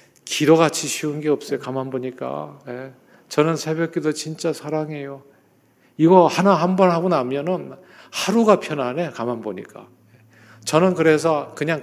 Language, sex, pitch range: Korean, male, 140-185 Hz